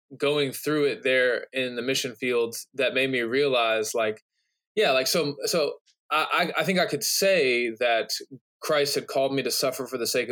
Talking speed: 190 wpm